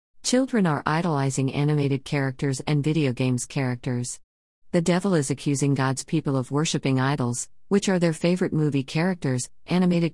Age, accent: 40-59, American